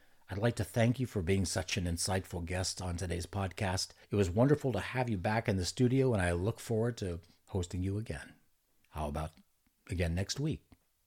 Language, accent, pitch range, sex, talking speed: English, American, 90-125 Hz, male, 200 wpm